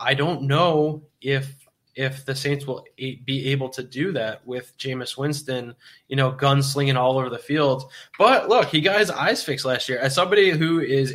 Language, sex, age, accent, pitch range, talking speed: English, male, 20-39, American, 130-150 Hz, 195 wpm